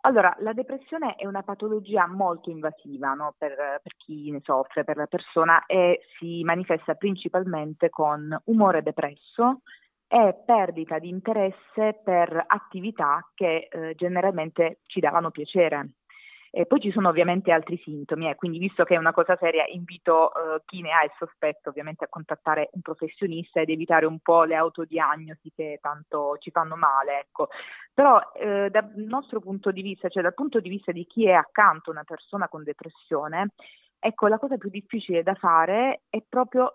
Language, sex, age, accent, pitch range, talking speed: Italian, female, 30-49, native, 155-195 Hz, 170 wpm